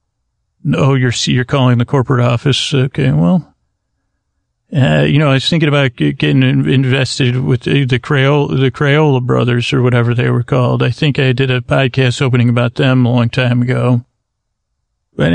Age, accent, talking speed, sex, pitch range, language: 40-59, American, 170 wpm, male, 125-150 Hz, English